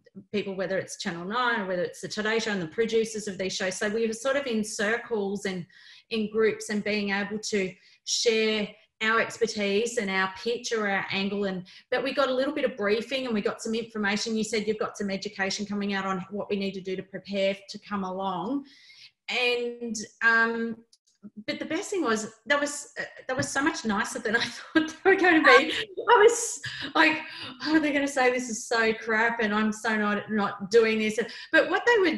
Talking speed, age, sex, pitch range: 225 wpm, 30-49, female, 205-265 Hz